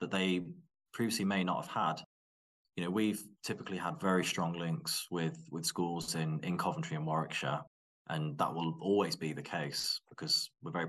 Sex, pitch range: male, 80-95 Hz